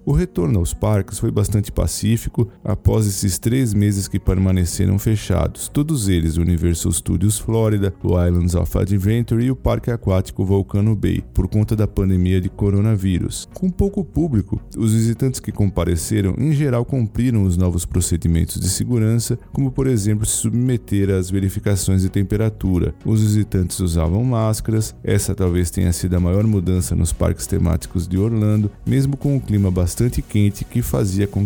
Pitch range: 90-115 Hz